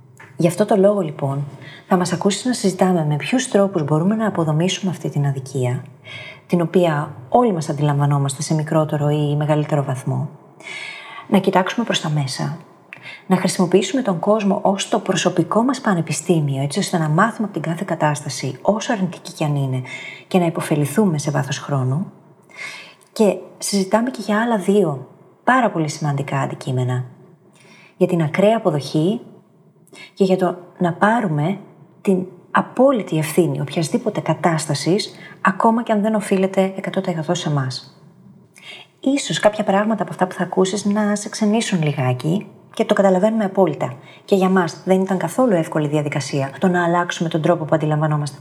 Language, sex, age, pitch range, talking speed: Greek, female, 30-49, 150-195 Hz, 155 wpm